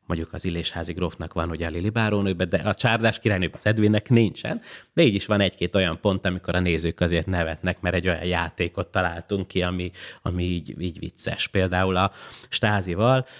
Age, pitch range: 30-49, 95-115 Hz